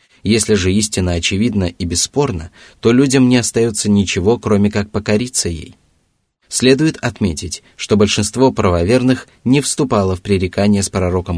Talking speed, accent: 135 wpm, native